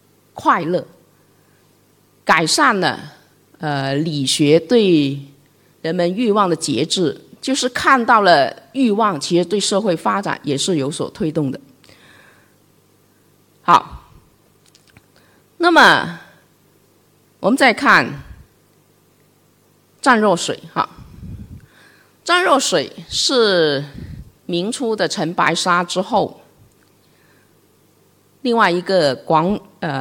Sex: female